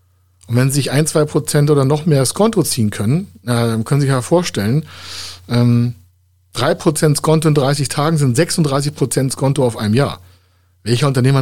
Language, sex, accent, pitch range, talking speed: German, male, German, 105-150 Hz, 185 wpm